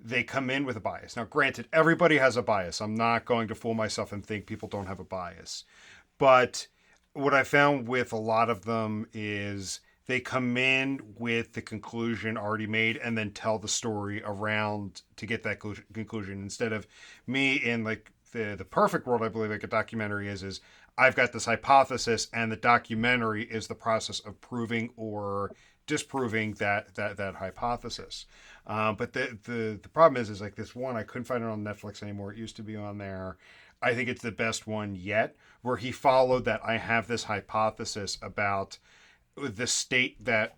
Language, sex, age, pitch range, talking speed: English, male, 40-59, 105-120 Hz, 190 wpm